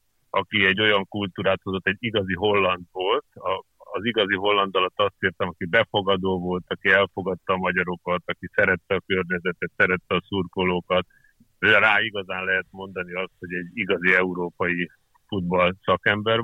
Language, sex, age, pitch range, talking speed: Hungarian, male, 50-69, 95-115 Hz, 150 wpm